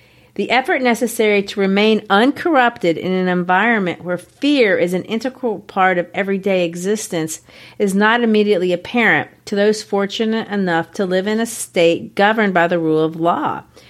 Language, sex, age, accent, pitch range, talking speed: English, female, 40-59, American, 175-235 Hz, 160 wpm